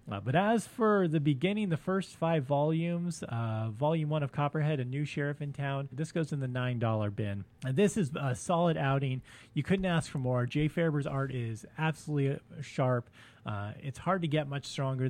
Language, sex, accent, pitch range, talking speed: English, male, American, 120-175 Hz, 200 wpm